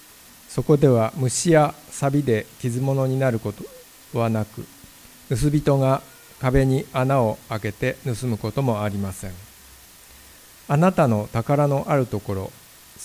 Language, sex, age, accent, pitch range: Japanese, male, 50-69, native, 110-135 Hz